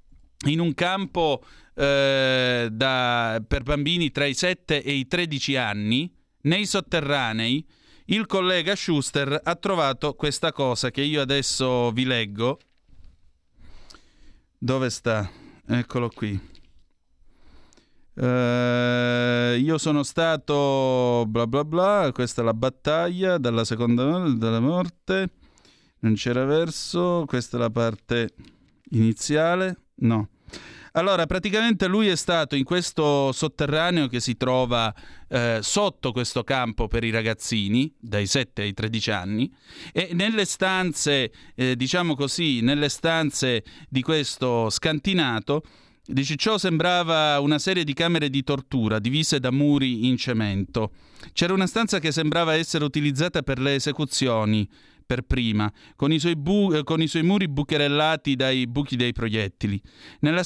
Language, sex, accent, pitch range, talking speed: Italian, male, native, 120-160 Hz, 130 wpm